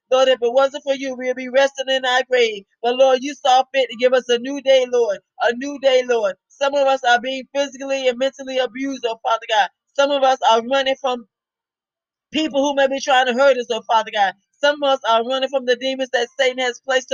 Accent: American